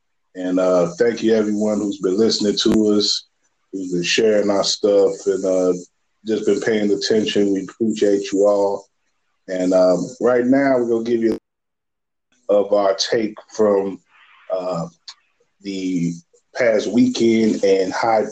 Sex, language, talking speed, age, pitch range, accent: male, English, 145 wpm, 30-49, 90-110 Hz, American